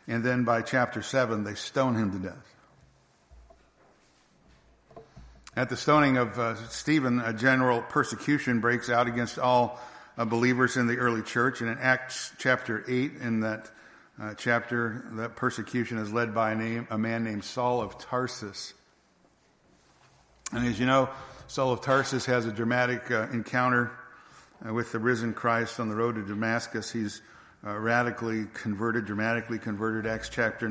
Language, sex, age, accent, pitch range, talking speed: English, male, 60-79, American, 115-130 Hz, 155 wpm